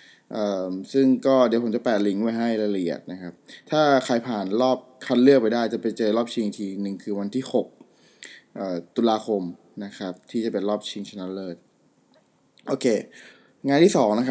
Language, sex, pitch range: Thai, male, 105-130 Hz